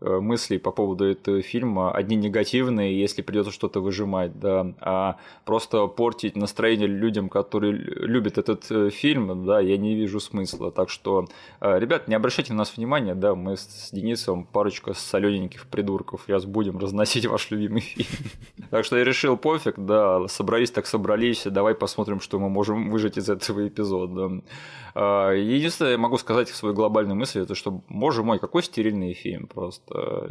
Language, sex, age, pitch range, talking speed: Russian, male, 20-39, 100-120 Hz, 160 wpm